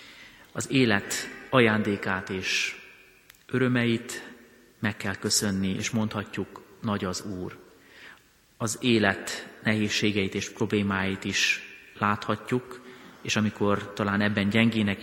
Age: 30-49